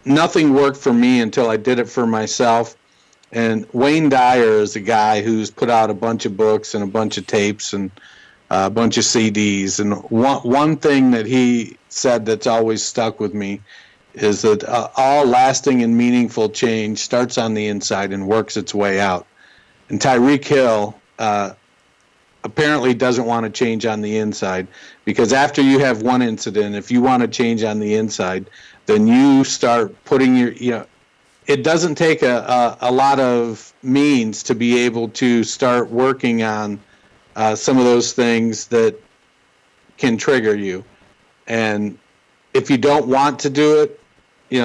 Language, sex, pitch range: English, male, 105-130 Hz